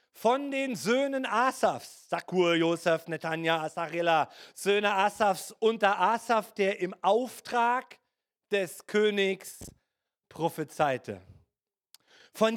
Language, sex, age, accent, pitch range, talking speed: German, male, 40-59, German, 180-240 Hz, 90 wpm